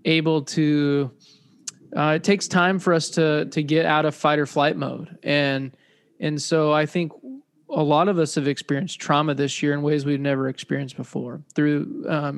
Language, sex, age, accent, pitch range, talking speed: English, male, 20-39, American, 145-170 Hz, 190 wpm